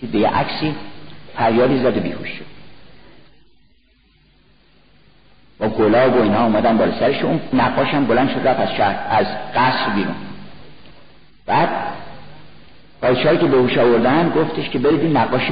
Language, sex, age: Persian, male, 50-69